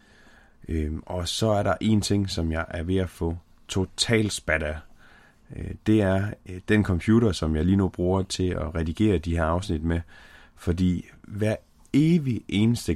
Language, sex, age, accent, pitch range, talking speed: Danish, male, 30-49, native, 80-100 Hz, 160 wpm